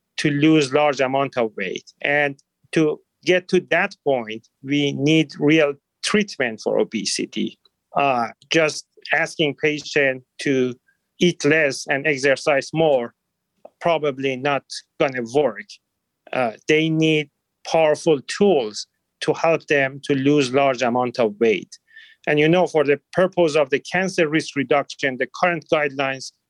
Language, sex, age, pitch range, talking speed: English, male, 40-59, 135-165 Hz, 135 wpm